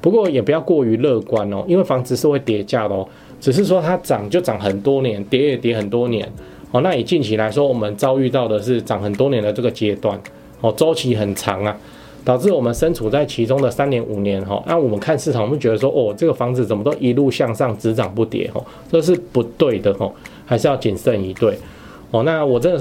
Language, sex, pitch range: Chinese, male, 105-135 Hz